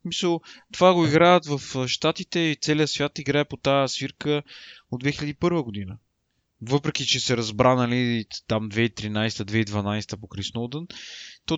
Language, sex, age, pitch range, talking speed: Bulgarian, male, 20-39, 130-175 Hz, 135 wpm